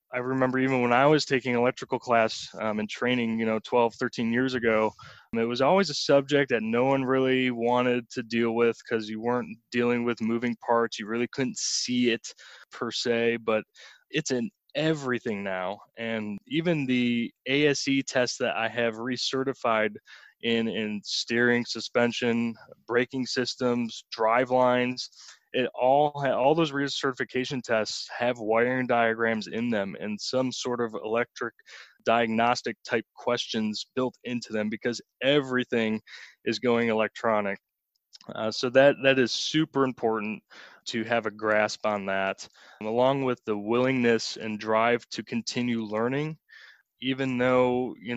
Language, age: English, 20-39